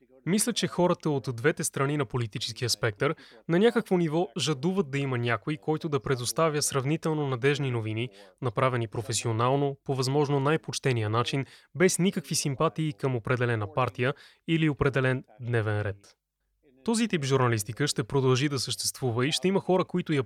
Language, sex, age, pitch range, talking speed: Bulgarian, male, 20-39, 125-155 Hz, 150 wpm